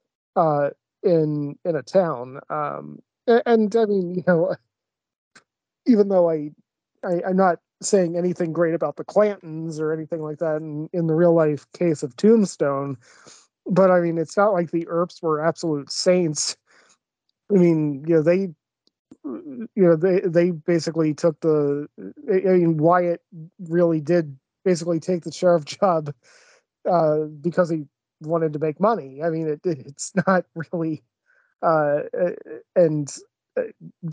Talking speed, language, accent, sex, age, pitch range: 150 wpm, English, American, male, 30-49, 155-180 Hz